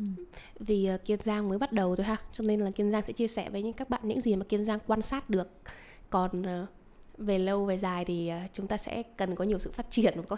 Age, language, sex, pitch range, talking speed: 20-39, Vietnamese, female, 185-225 Hz, 270 wpm